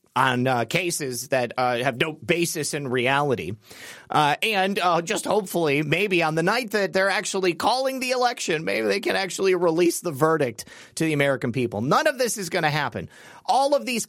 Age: 30-49